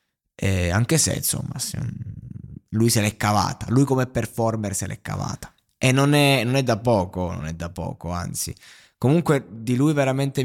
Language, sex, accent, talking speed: Italian, male, native, 180 wpm